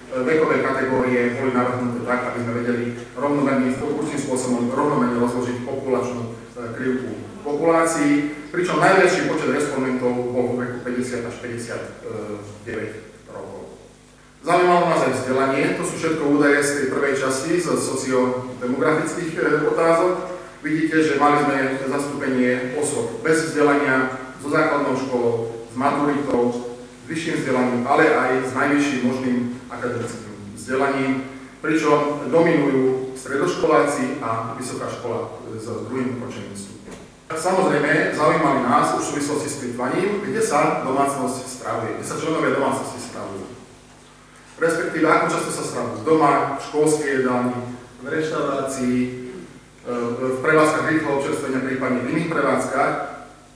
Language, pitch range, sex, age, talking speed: Slovak, 125-145 Hz, male, 40-59, 120 wpm